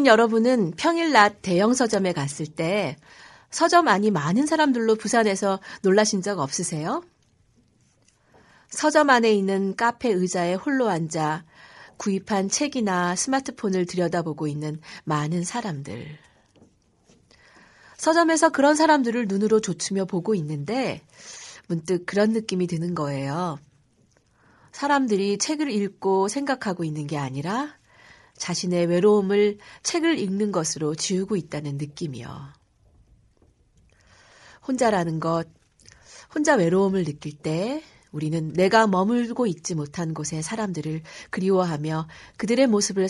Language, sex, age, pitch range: Korean, female, 40-59, 155-225 Hz